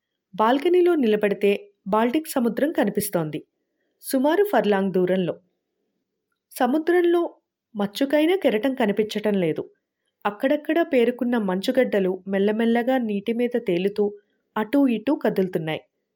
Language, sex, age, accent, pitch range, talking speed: Telugu, female, 30-49, native, 205-275 Hz, 85 wpm